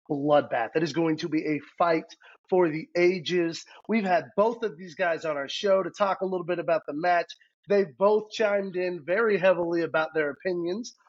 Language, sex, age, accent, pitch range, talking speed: English, male, 30-49, American, 155-205 Hz, 200 wpm